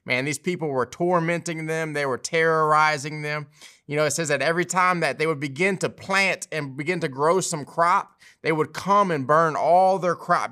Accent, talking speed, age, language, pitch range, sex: American, 210 wpm, 20-39, English, 155-200 Hz, male